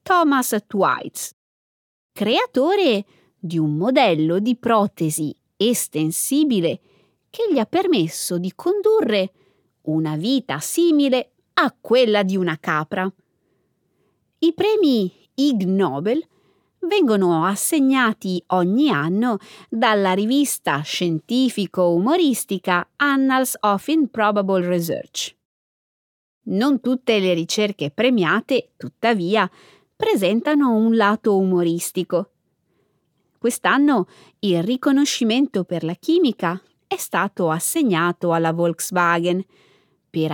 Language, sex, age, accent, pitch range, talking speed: Italian, female, 30-49, native, 180-260 Hz, 90 wpm